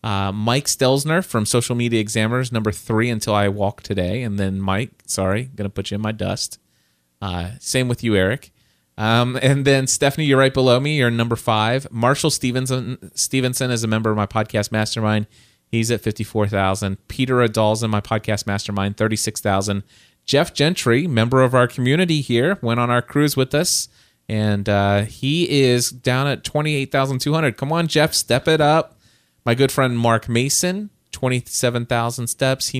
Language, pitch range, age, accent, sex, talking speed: English, 100-130 Hz, 30-49, American, male, 185 wpm